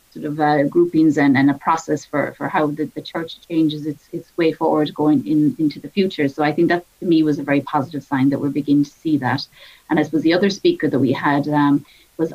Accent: Irish